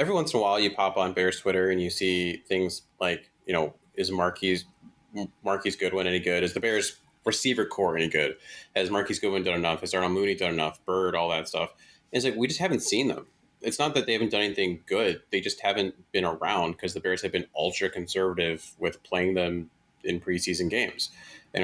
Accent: American